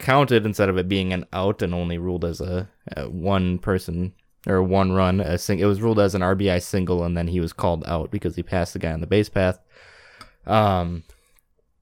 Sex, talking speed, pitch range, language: male, 220 wpm, 90-105 Hz, English